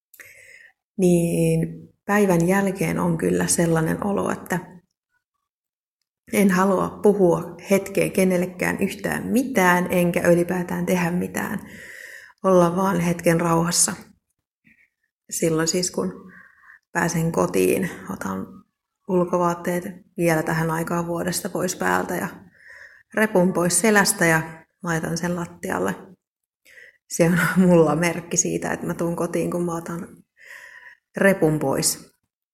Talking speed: 105 wpm